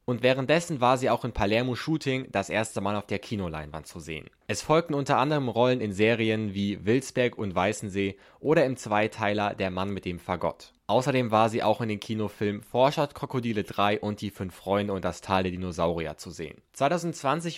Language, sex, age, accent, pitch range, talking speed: German, male, 20-39, German, 100-125 Hz, 195 wpm